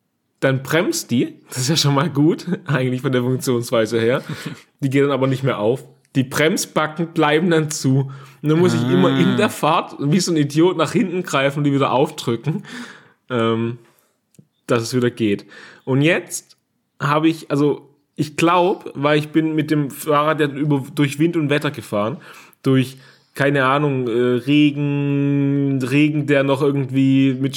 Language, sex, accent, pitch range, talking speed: German, male, German, 130-150 Hz, 170 wpm